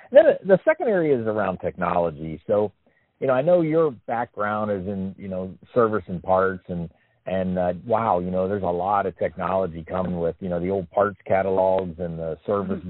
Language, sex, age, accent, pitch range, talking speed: English, male, 40-59, American, 85-110 Hz, 200 wpm